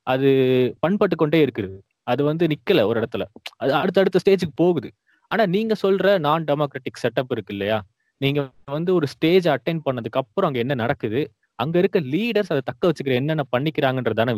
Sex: male